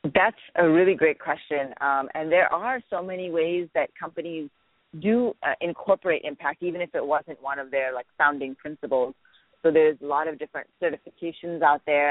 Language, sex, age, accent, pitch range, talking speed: English, female, 30-49, American, 140-175 Hz, 185 wpm